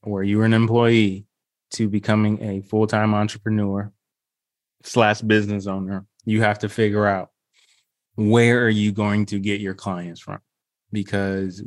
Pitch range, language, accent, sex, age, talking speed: 100-115 Hz, English, American, male, 20-39, 150 wpm